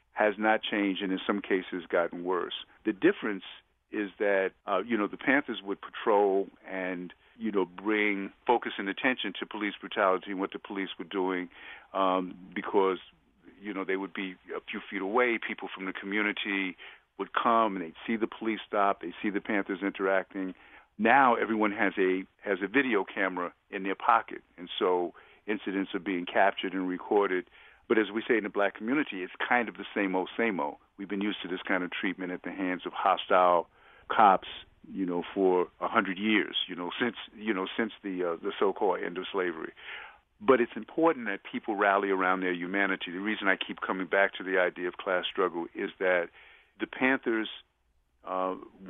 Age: 50-69